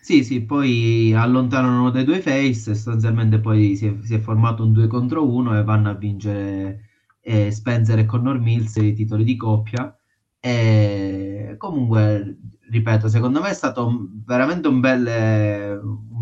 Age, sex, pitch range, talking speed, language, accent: 30-49, male, 110-130 Hz, 155 wpm, Italian, native